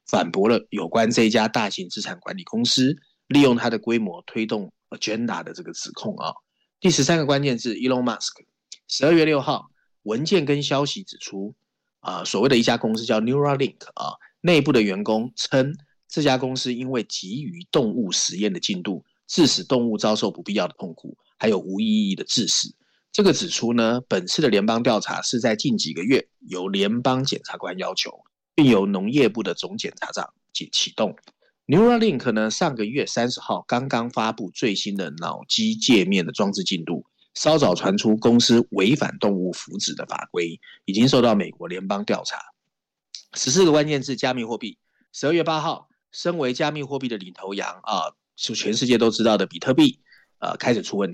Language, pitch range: Chinese, 115-155 Hz